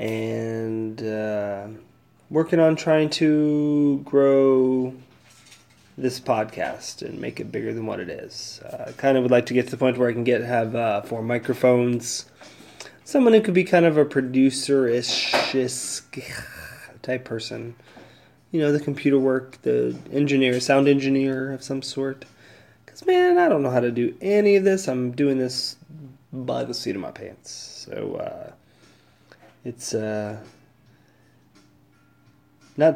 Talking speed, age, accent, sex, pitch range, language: 150 wpm, 20-39, American, male, 120-150 Hz, English